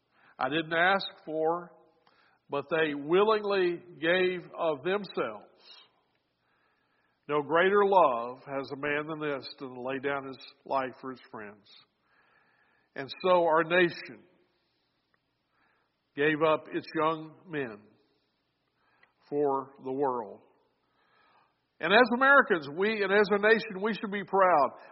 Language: English